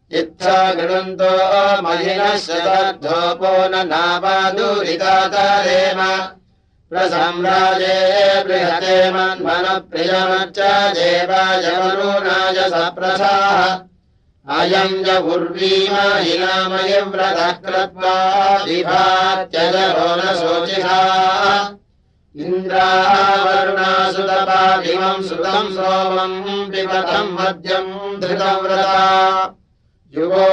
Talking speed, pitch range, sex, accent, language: 45 wpm, 185-190 Hz, male, Indian, Russian